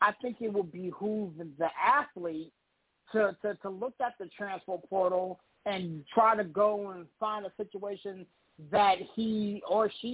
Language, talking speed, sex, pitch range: English, 160 wpm, male, 170-210 Hz